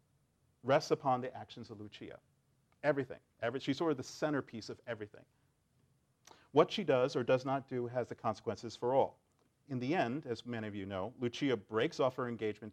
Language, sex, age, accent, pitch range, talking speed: English, male, 40-59, American, 105-135 Hz, 185 wpm